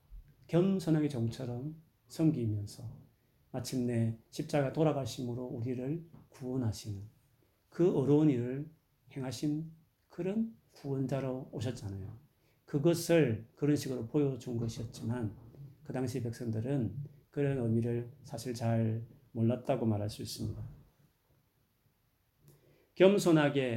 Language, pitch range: Korean, 115-145 Hz